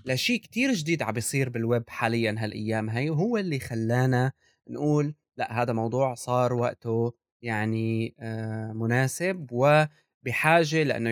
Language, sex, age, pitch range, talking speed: Arabic, male, 20-39, 115-150 Hz, 130 wpm